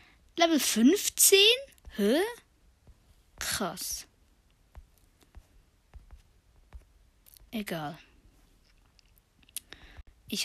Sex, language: female, German